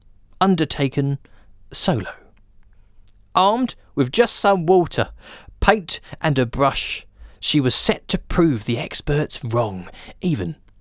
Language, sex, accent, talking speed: English, male, British, 110 wpm